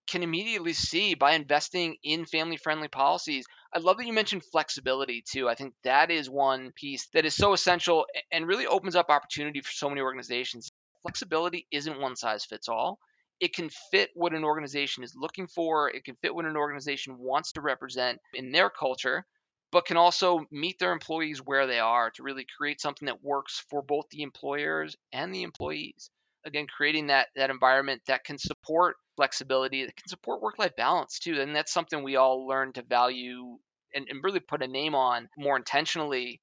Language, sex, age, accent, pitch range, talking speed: English, male, 20-39, American, 130-160 Hz, 190 wpm